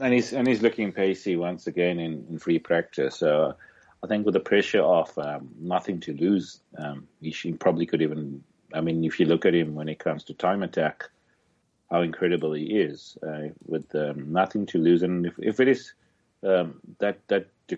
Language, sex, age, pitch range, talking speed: English, male, 40-59, 80-100 Hz, 200 wpm